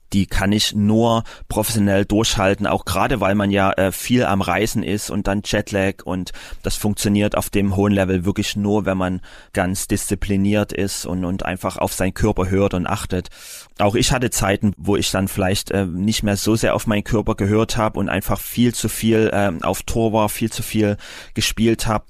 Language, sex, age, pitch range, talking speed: German, male, 30-49, 95-110 Hz, 200 wpm